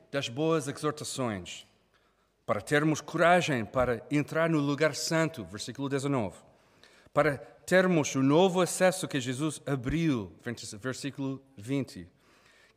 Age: 40-59